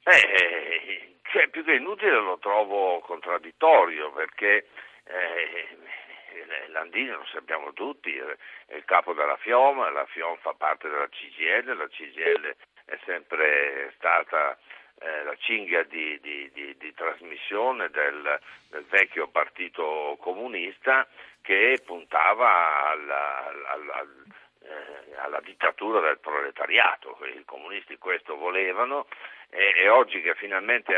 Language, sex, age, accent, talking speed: Italian, male, 60-79, native, 110 wpm